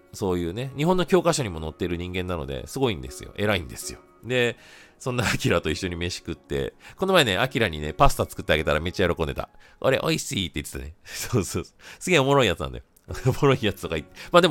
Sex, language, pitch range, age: male, Japanese, 85-140 Hz, 40-59